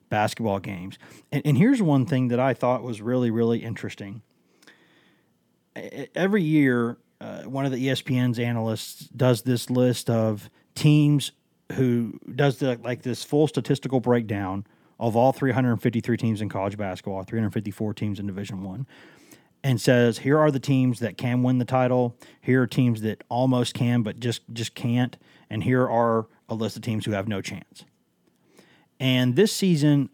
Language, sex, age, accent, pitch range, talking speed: English, male, 30-49, American, 115-140 Hz, 165 wpm